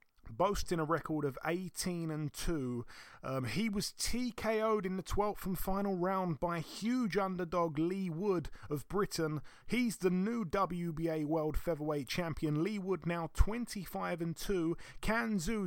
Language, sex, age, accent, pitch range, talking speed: English, male, 30-49, British, 140-180 Hz, 145 wpm